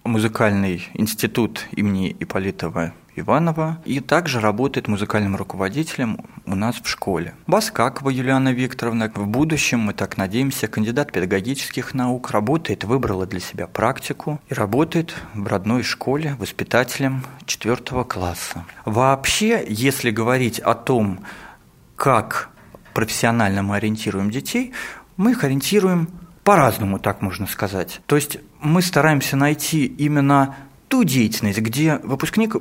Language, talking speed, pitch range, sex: Russian, 120 wpm, 110-155 Hz, male